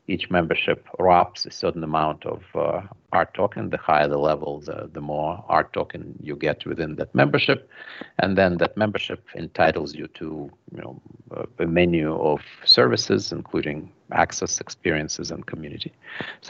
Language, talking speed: English, 155 wpm